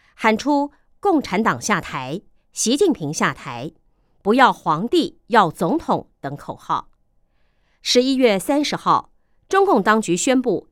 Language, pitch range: Chinese, 170-255 Hz